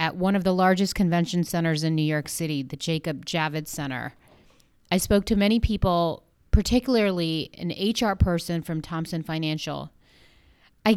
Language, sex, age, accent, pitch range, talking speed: English, female, 30-49, American, 165-205 Hz, 155 wpm